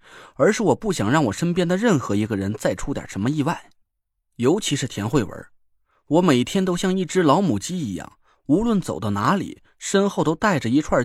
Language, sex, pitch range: Chinese, male, 135-200 Hz